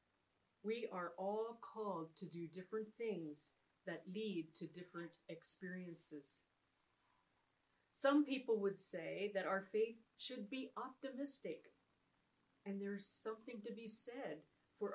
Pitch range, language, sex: 170-220 Hz, English, female